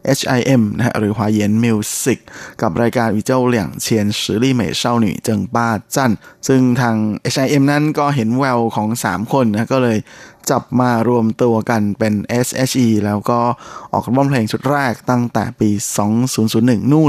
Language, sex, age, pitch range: Thai, male, 20-39, 115-135 Hz